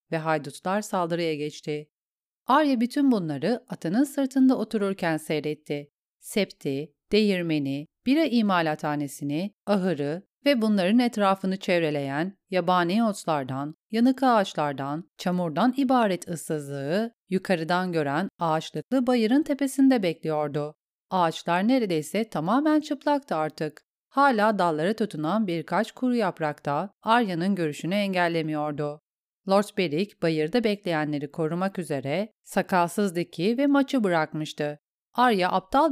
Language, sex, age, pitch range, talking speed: Turkish, female, 40-59, 155-230 Hz, 100 wpm